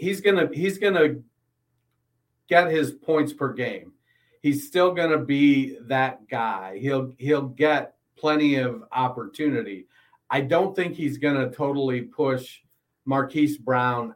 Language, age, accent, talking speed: English, 40-59, American, 125 wpm